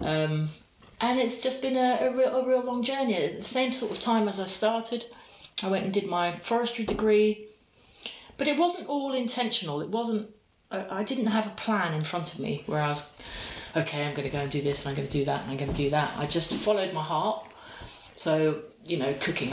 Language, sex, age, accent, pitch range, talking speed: English, female, 40-59, British, 150-225 Hz, 235 wpm